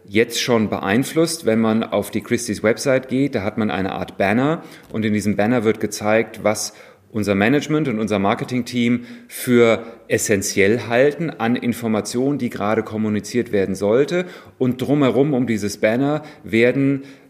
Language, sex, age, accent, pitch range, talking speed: German, male, 40-59, German, 110-130 Hz, 155 wpm